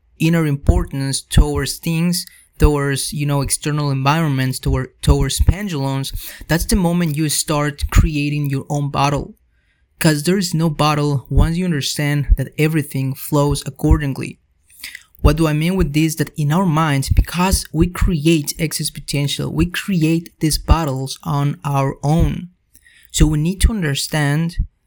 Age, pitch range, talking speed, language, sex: 30-49, 135-160 Hz, 140 wpm, English, male